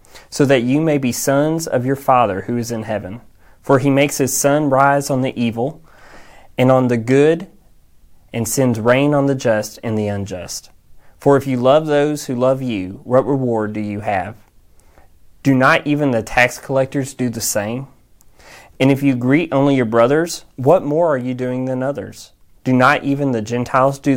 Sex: male